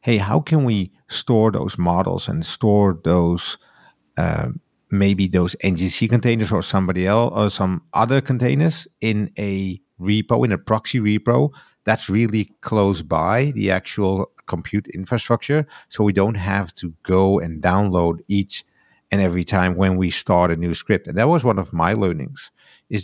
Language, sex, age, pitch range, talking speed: English, male, 50-69, 95-115 Hz, 165 wpm